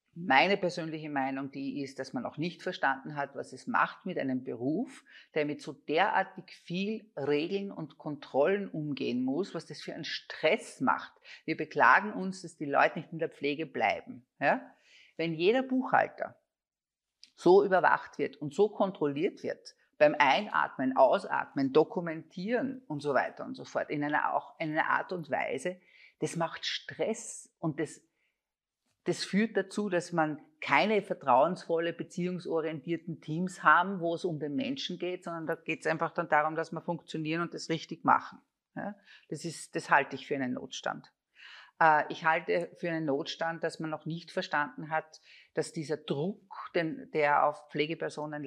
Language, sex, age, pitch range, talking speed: German, female, 50-69, 150-185 Hz, 165 wpm